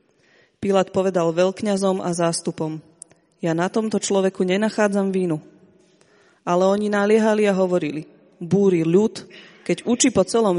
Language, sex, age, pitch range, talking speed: Slovak, female, 30-49, 180-210 Hz, 125 wpm